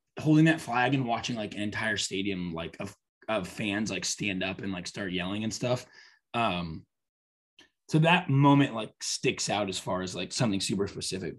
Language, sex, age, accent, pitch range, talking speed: English, male, 20-39, American, 100-140 Hz, 190 wpm